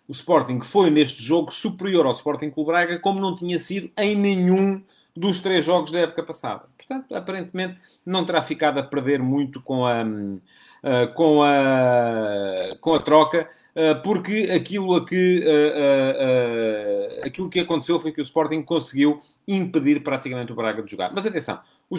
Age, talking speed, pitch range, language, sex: 40-59, 150 wpm, 140-180 Hz, English, male